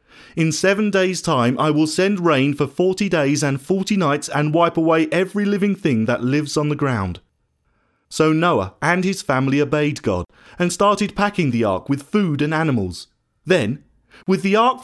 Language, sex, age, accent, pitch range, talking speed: English, male, 30-49, British, 130-210 Hz, 180 wpm